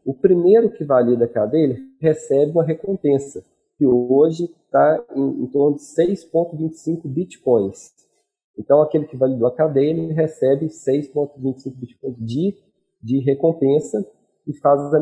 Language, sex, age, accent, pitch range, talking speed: Portuguese, male, 40-59, Brazilian, 125-160 Hz, 130 wpm